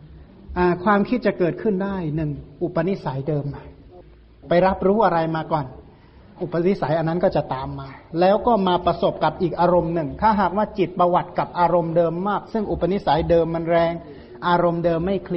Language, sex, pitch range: Thai, male, 155-185 Hz